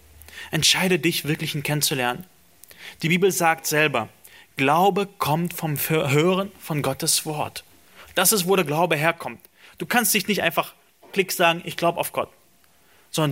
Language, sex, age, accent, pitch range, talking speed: German, male, 30-49, German, 145-180 Hz, 155 wpm